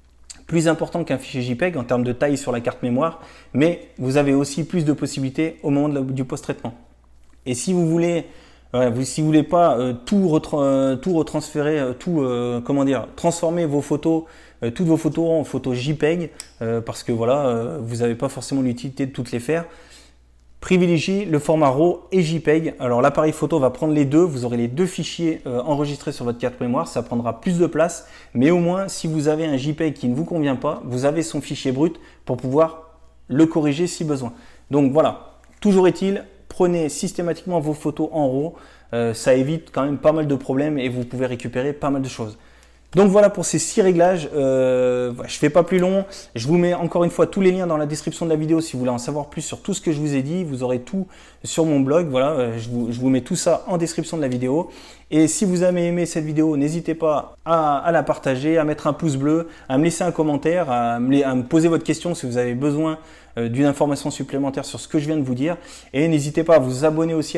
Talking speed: 230 wpm